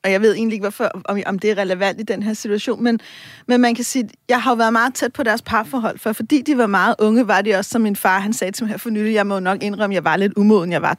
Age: 30-49